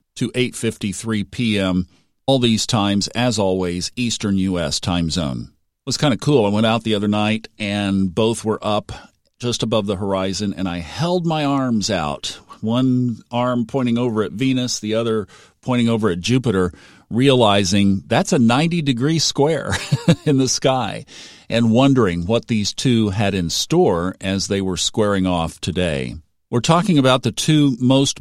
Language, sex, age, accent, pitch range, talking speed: English, male, 50-69, American, 100-125 Hz, 165 wpm